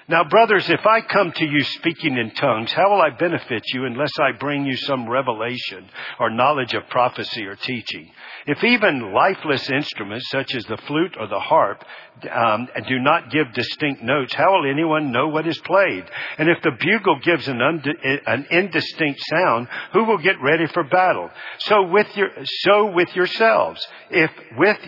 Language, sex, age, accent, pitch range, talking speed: English, male, 50-69, American, 135-180 Hz, 185 wpm